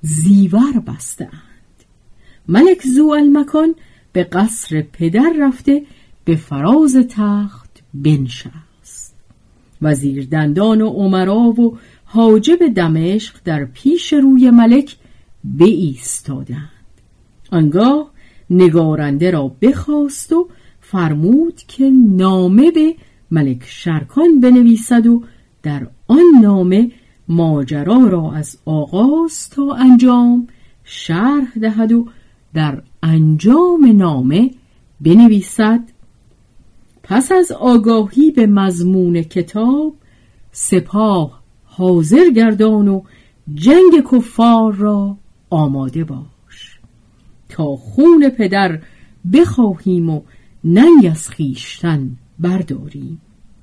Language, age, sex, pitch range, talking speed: Persian, 50-69, female, 150-245 Hz, 85 wpm